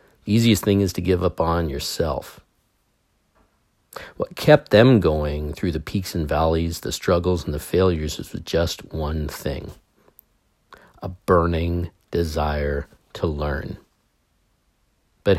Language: English